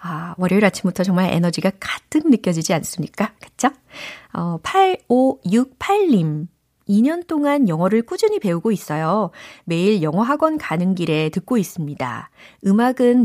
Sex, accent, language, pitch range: female, native, Korean, 160-230 Hz